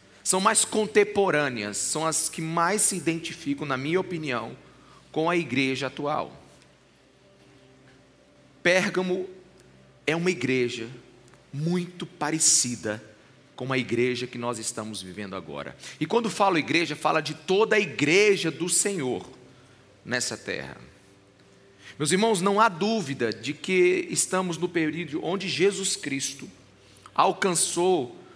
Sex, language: male, Portuguese